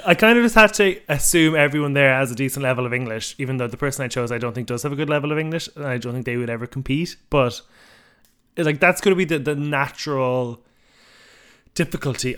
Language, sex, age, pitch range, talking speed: English, male, 20-39, 115-145 Hz, 240 wpm